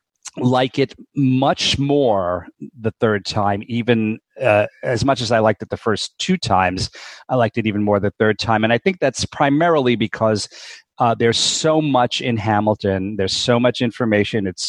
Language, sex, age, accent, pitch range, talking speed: English, male, 40-59, American, 105-125 Hz, 180 wpm